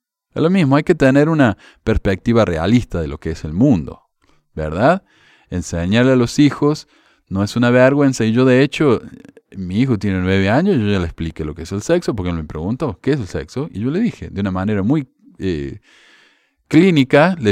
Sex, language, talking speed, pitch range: male, Spanish, 210 wpm, 95-140 Hz